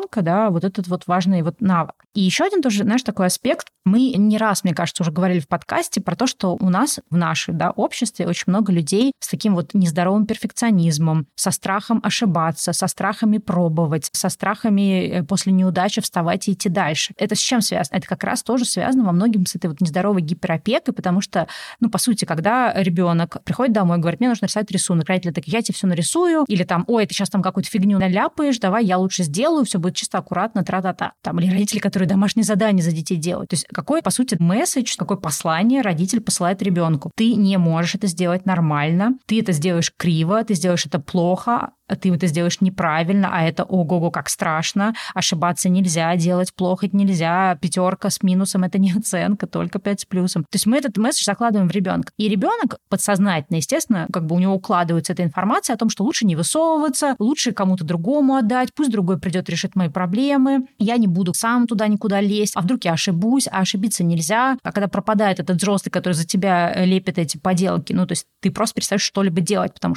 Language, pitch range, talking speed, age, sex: Russian, 180-215 Hz, 205 wpm, 20-39, female